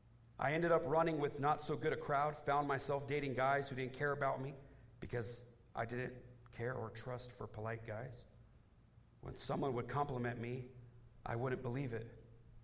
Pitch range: 110-125 Hz